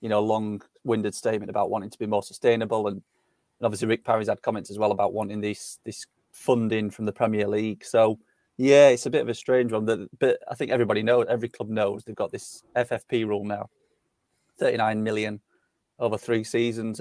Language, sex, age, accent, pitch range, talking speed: English, male, 30-49, British, 105-115 Hz, 200 wpm